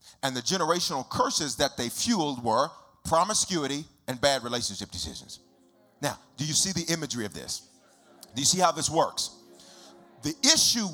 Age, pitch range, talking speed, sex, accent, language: 40-59, 145-210 Hz, 160 wpm, male, American, English